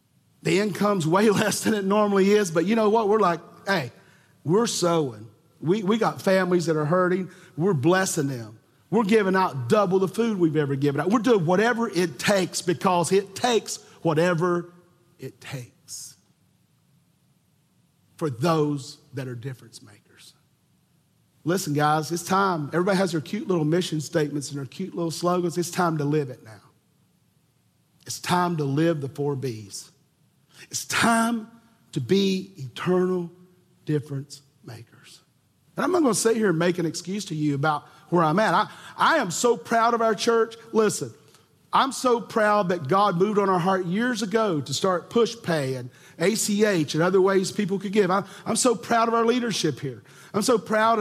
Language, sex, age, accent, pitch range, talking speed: English, male, 50-69, American, 150-205 Hz, 175 wpm